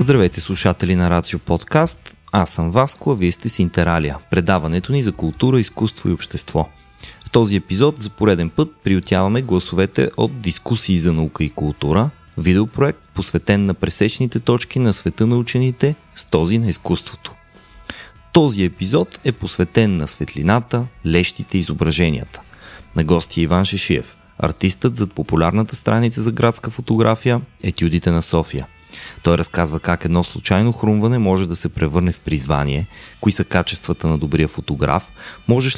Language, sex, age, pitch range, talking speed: Bulgarian, male, 30-49, 85-115 Hz, 150 wpm